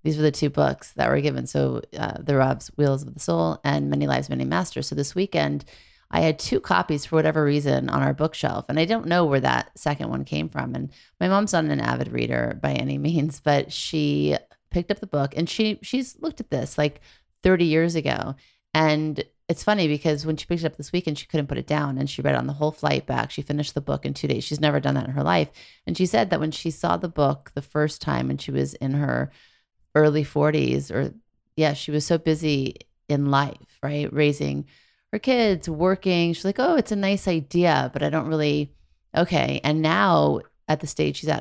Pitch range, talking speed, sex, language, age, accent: 140-165 Hz, 230 wpm, female, English, 30-49, American